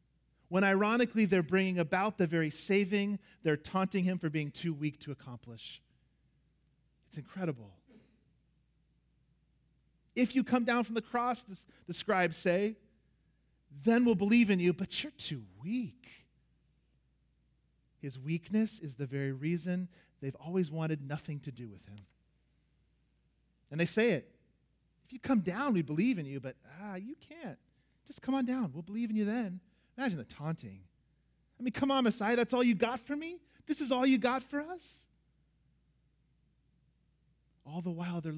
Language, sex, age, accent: English, male, 40-59, American